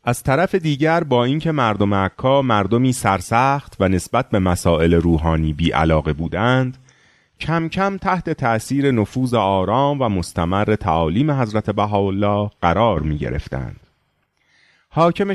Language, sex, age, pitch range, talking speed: Persian, male, 30-49, 90-140 Hz, 125 wpm